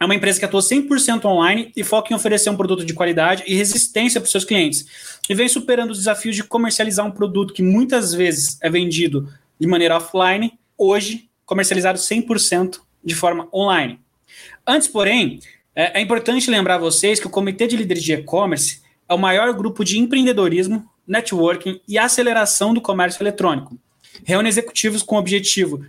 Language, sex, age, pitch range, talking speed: Portuguese, male, 20-39, 175-220 Hz, 175 wpm